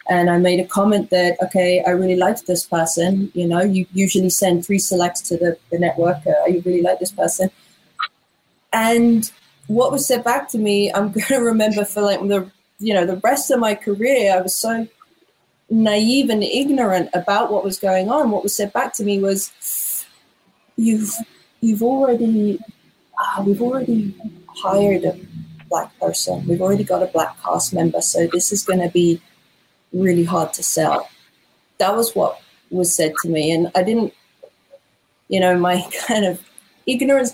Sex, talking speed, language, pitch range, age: female, 175 wpm, English, 175-215 Hz, 20-39